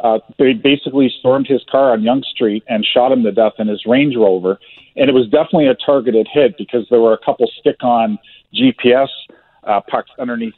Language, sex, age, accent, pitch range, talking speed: English, male, 40-59, American, 120-155 Hz, 200 wpm